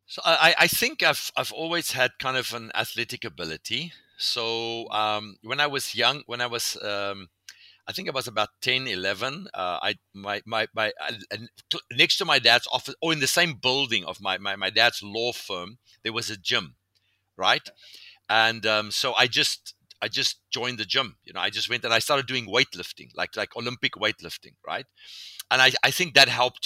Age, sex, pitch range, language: 50-69, male, 105-130 Hz, English